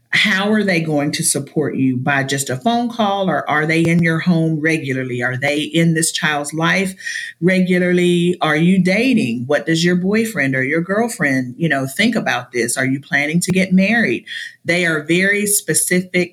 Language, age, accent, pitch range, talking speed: English, 40-59, American, 145-200 Hz, 185 wpm